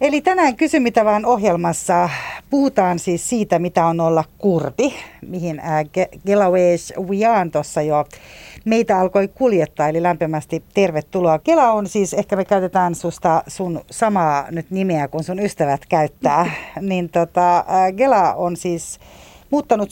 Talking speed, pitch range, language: 140 wpm, 155-205 Hz, Finnish